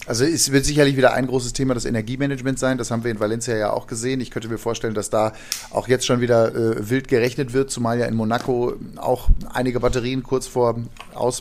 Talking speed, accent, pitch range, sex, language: 225 wpm, German, 115-130 Hz, male, German